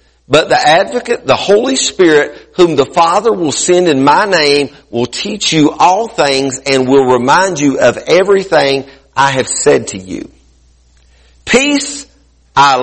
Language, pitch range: English, 100-160 Hz